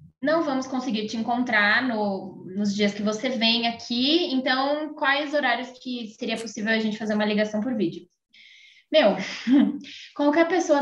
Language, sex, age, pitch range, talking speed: Portuguese, female, 10-29, 215-295 Hz, 155 wpm